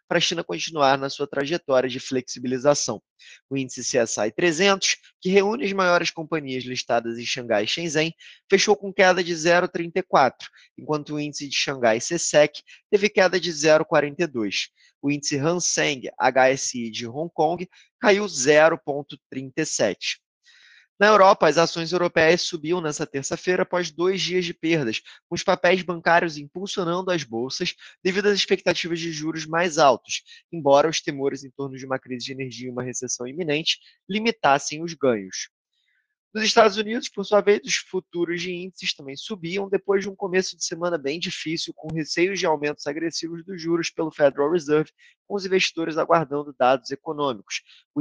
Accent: Brazilian